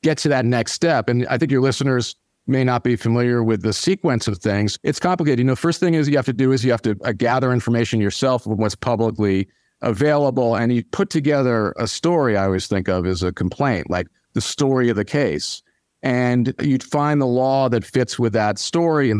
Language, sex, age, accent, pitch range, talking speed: English, male, 40-59, American, 110-140 Hz, 225 wpm